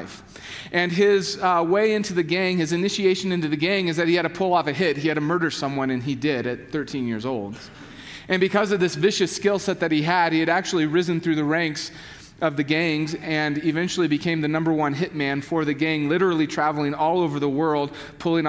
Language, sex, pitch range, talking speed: English, male, 150-180 Hz, 225 wpm